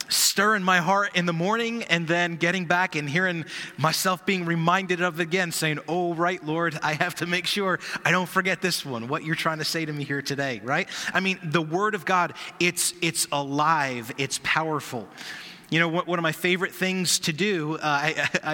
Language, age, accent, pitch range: English, 30-49, American, 155-185 Hz